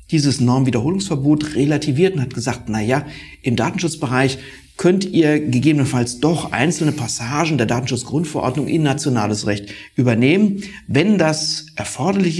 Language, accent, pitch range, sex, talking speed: German, German, 115-155 Hz, male, 120 wpm